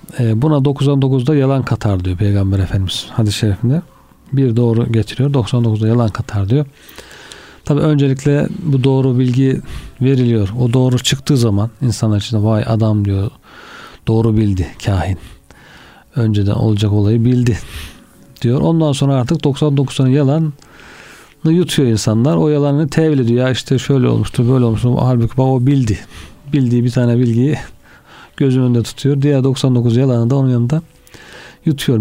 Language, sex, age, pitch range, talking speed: Turkish, male, 40-59, 110-140 Hz, 135 wpm